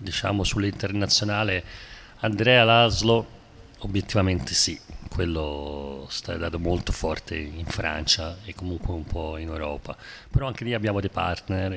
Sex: male